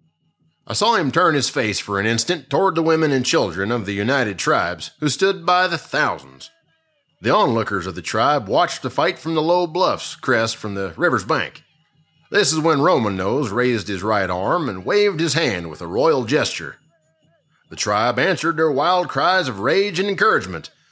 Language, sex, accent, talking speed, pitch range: English, male, American, 190 wpm, 130-170 Hz